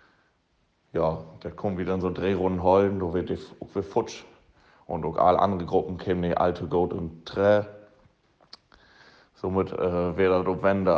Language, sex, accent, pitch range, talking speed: German, male, German, 90-105 Hz, 160 wpm